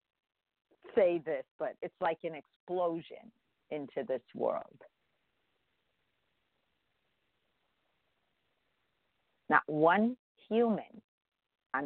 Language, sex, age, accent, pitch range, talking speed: English, female, 50-69, American, 145-195 Hz, 70 wpm